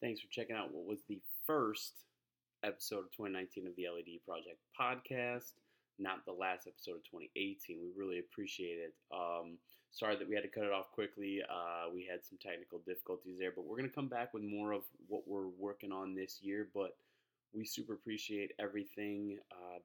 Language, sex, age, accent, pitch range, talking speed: English, male, 20-39, American, 95-115 Hz, 195 wpm